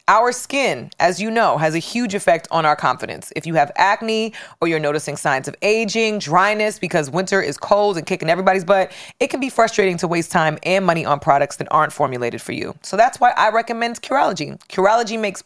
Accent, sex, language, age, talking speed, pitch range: American, female, English, 30-49, 215 wpm, 165-225 Hz